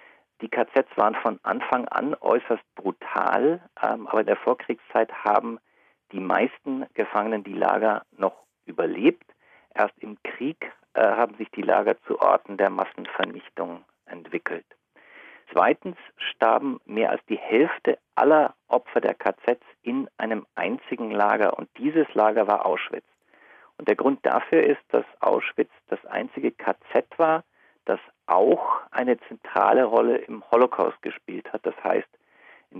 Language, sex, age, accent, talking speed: German, male, 40-59, German, 140 wpm